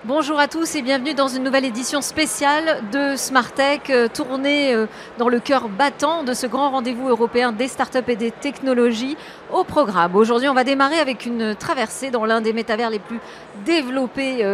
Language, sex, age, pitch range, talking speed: French, female, 40-59, 220-280 Hz, 180 wpm